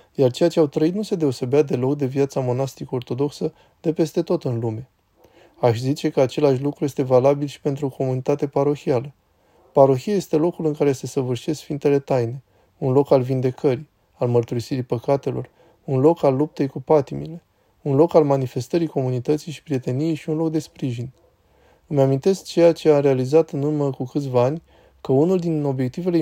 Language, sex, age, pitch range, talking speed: Romanian, male, 20-39, 125-150 Hz, 180 wpm